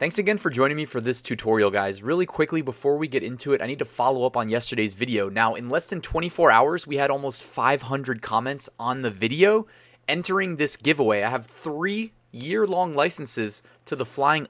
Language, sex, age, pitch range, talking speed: English, male, 20-39, 120-160 Hz, 205 wpm